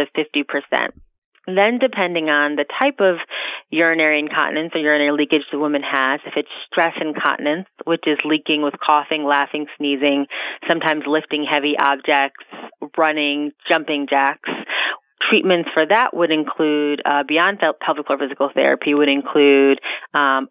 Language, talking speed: English, 135 wpm